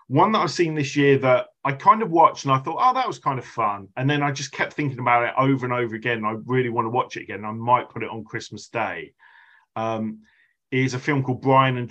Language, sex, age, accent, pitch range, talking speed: English, male, 40-59, British, 120-145 Hz, 275 wpm